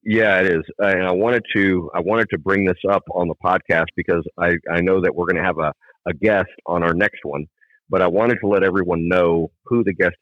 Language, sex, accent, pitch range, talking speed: English, male, American, 85-100 Hz, 255 wpm